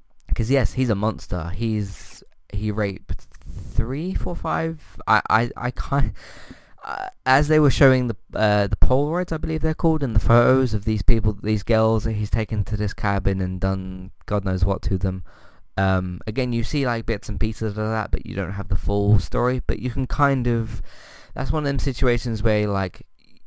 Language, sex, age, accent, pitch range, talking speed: English, male, 20-39, British, 95-120 Hz, 200 wpm